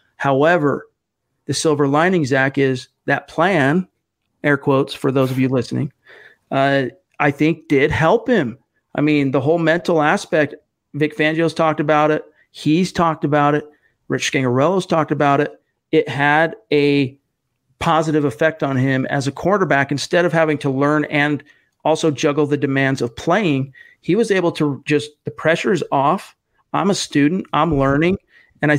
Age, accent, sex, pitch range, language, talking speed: 40-59, American, male, 140-160 Hz, English, 165 wpm